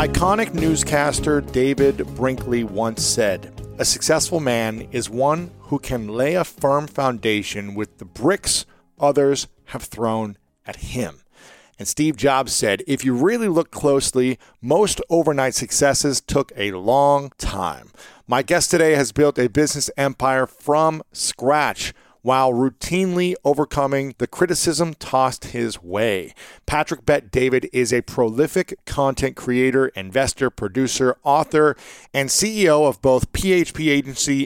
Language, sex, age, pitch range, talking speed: English, male, 40-59, 125-155 Hz, 130 wpm